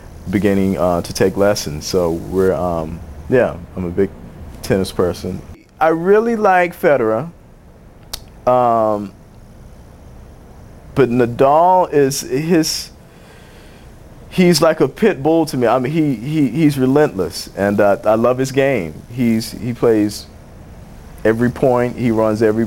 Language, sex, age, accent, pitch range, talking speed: English, male, 40-59, American, 95-130 Hz, 130 wpm